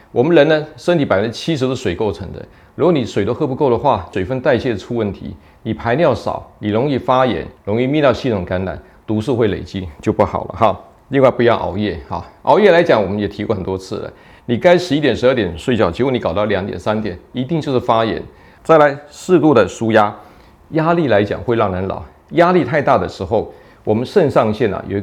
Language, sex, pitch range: Chinese, male, 100-130 Hz